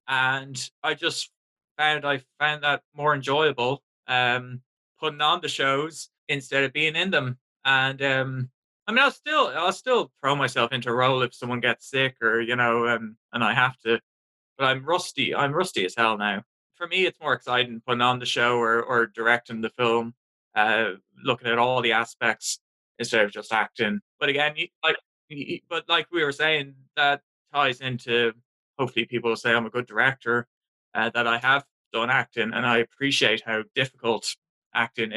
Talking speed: 185 wpm